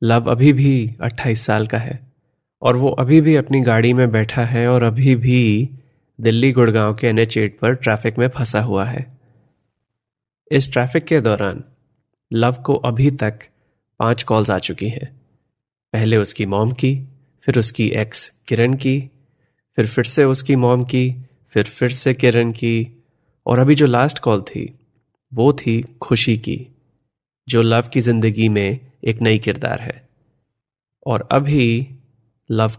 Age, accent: 30-49, native